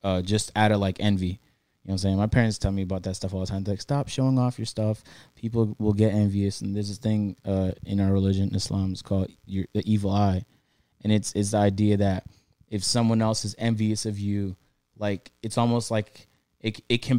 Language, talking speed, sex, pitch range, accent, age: English, 235 wpm, male, 100-125 Hz, American, 20-39